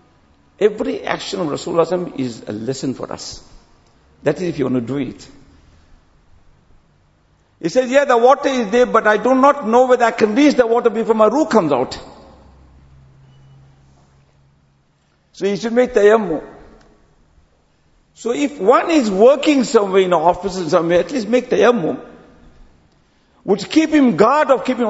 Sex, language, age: male, English, 60-79